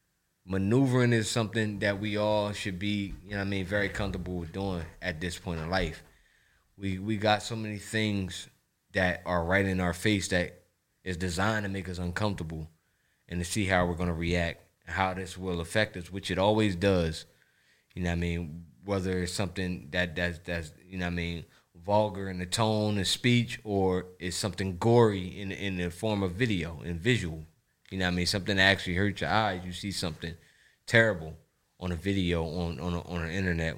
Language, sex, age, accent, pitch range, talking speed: English, male, 20-39, American, 85-105 Hz, 205 wpm